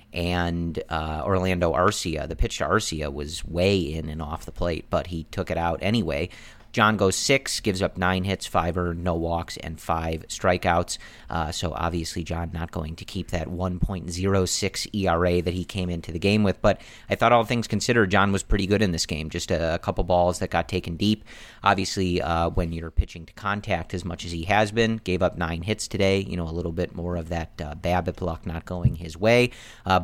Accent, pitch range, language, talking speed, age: American, 85-105 Hz, English, 225 wpm, 40-59